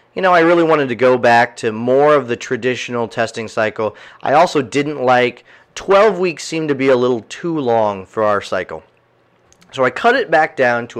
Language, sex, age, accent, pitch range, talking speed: English, male, 30-49, American, 115-150 Hz, 205 wpm